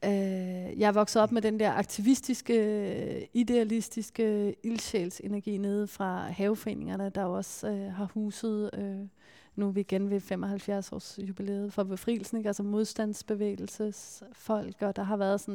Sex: female